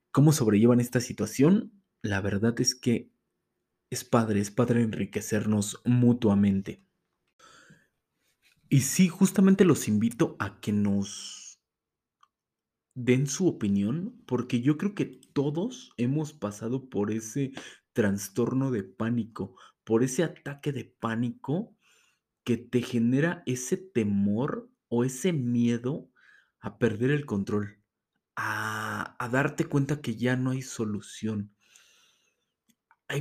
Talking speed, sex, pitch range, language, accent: 115 wpm, male, 110-140 Hz, Spanish, Mexican